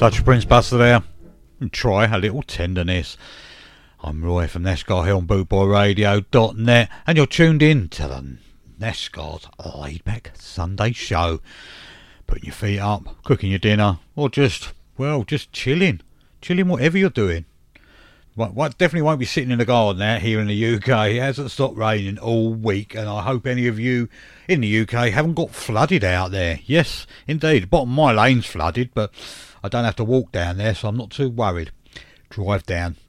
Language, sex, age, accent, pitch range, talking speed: English, male, 50-69, British, 95-125 Hz, 170 wpm